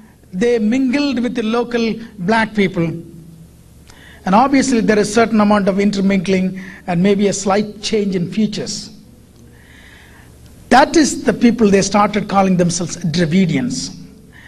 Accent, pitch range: Indian, 180-230 Hz